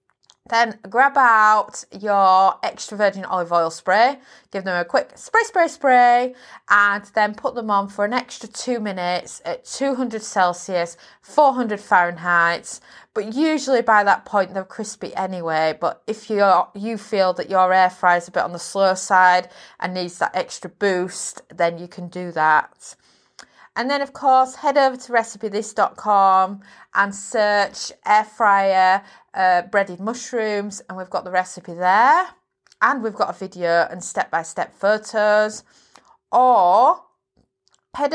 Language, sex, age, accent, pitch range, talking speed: English, female, 30-49, British, 175-225 Hz, 150 wpm